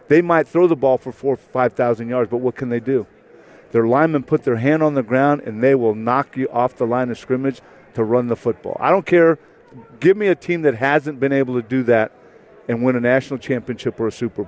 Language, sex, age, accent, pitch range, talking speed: English, male, 50-69, American, 120-150 Hz, 245 wpm